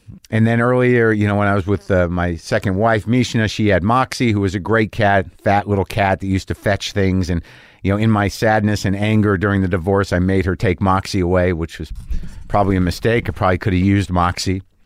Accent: American